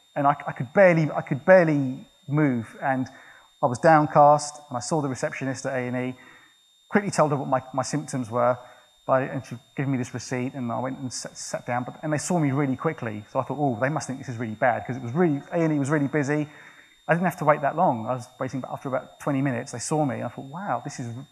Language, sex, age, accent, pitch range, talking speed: English, male, 30-49, British, 125-150 Hz, 270 wpm